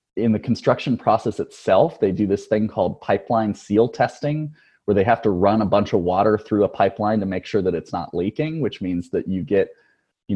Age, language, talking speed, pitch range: 20-39, English, 220 wpm, 95-115 Hz